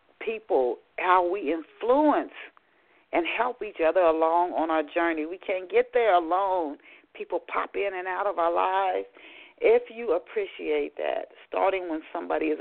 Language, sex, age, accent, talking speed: English, female, 40-59, American, 155 wpm